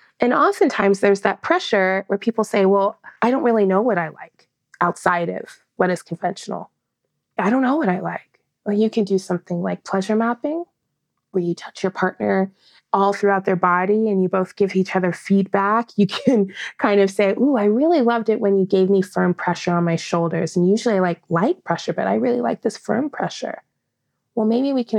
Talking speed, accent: 210 wpm, American